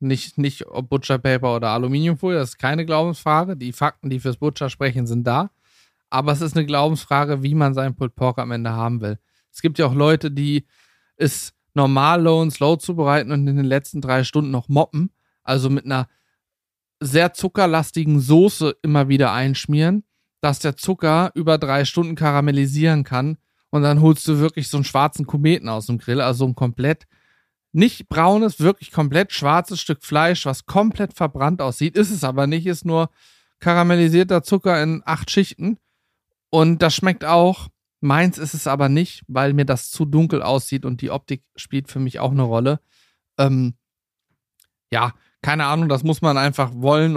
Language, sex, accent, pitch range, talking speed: German, male, German, 135-160 Hz, 175 wpm